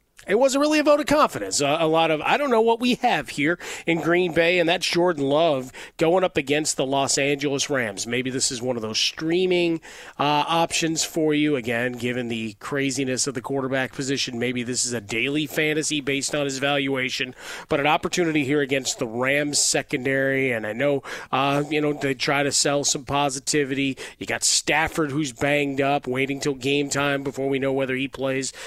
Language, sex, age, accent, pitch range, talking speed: English, male, 30-49, American, 130-150 Hz, 205 wpm